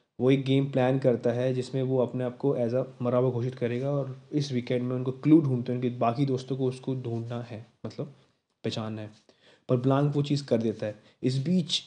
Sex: male